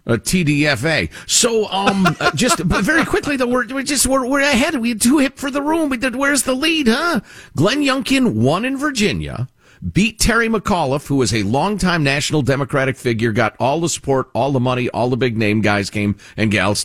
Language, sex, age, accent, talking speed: English, male, 50-69, American, 205 wpm